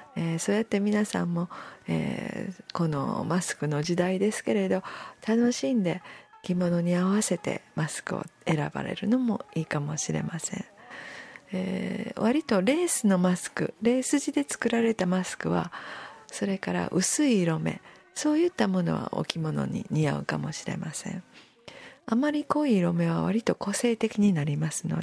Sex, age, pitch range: female, 50-69, 170-230 Hz